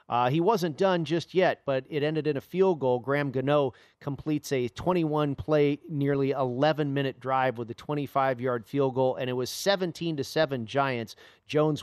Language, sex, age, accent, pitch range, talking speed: English, male, 40-59, American, 135-170 Hz, 160 wpm